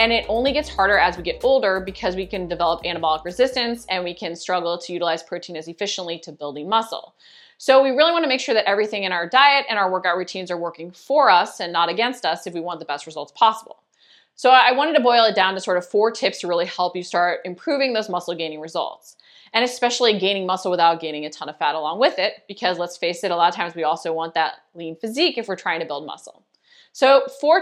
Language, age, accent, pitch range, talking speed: English, 20-39, American, 175-235 Hz, 250 wpm